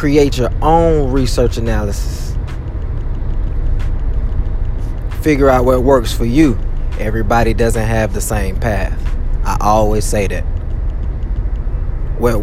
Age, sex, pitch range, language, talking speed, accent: 20-39, male, 90-130 Hz, English, 105 wpm, American